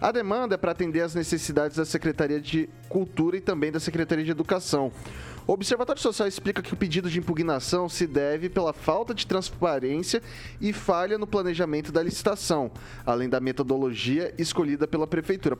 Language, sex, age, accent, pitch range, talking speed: Portuguese, male, 20-39, Brazilian, 140-180 Hz, 170 wpm